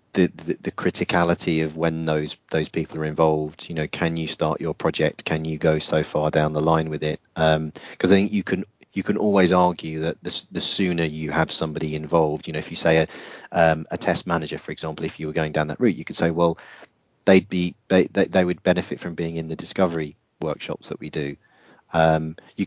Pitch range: 80-90 Hz